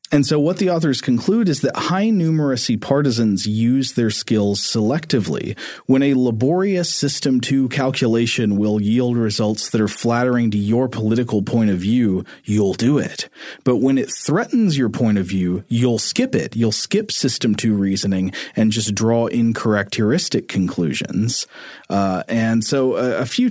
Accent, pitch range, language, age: American, 100-130 Hz, English, 40-59